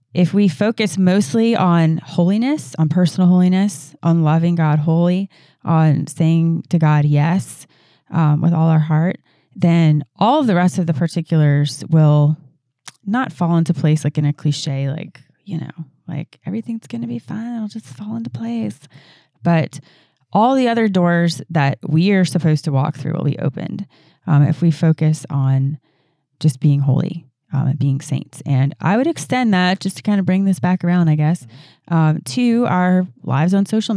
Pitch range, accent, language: 145-180 Hz, American, English